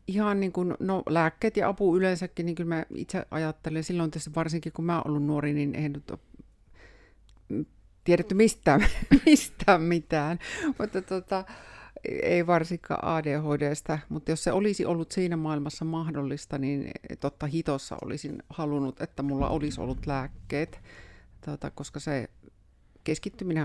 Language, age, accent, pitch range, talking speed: Finnish, 50-69, native, 140-170 Hz, 135 wpm